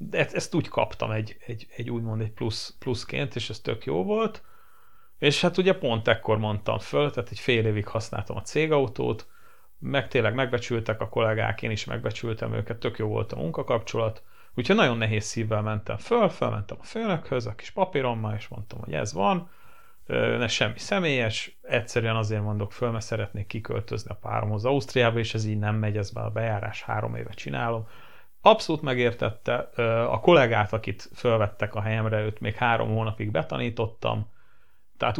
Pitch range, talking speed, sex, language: 110-125 Hz, 170 wpm, male, Hungarian